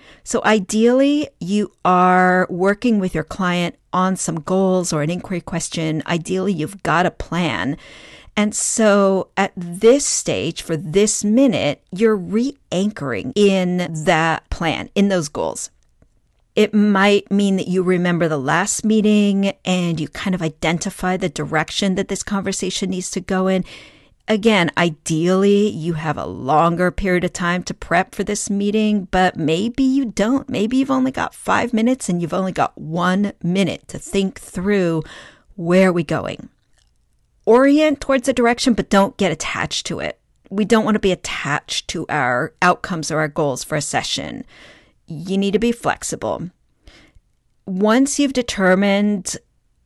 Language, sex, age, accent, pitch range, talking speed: English, female, 40-59, American, 175-210 Hz, 155 wpm